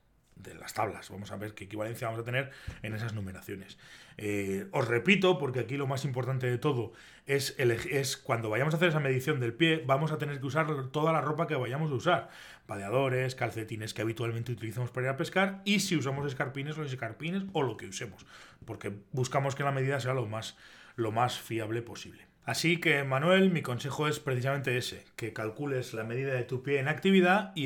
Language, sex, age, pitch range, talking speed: Spanish, male, 30-49, 115-160 Hz, 210 wpm